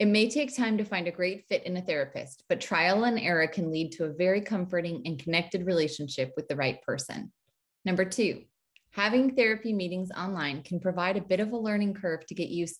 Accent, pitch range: American, 165-200 Hz